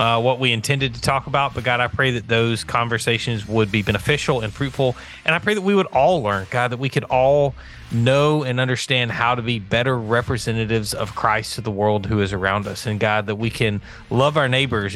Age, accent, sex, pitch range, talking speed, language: 30-49, American, male, 110-135 Hz, 230 wpm, English